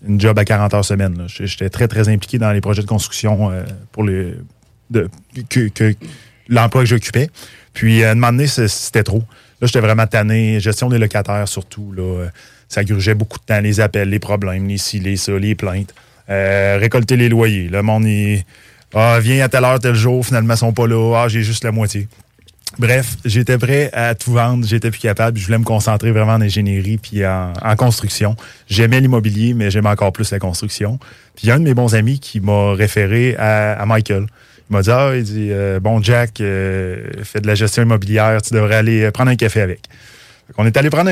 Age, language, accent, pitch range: 20-39, French, Canadian, 105-120 Hz